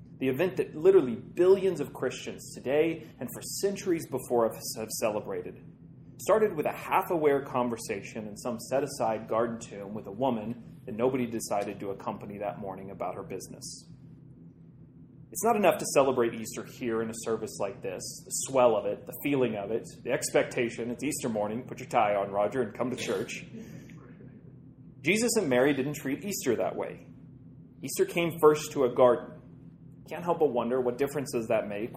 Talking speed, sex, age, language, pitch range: 175 wpm, male, 30-49, English, 115-150 Hz